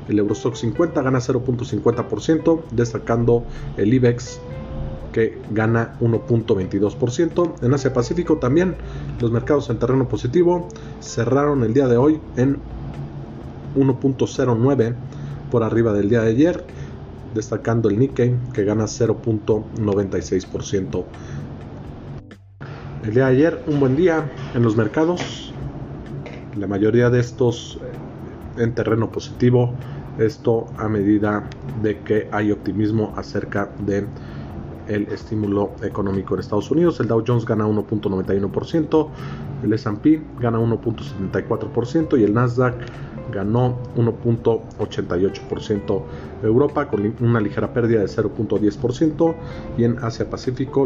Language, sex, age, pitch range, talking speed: Spanish, male, 40-59, 105-130 Hz, 115 wpm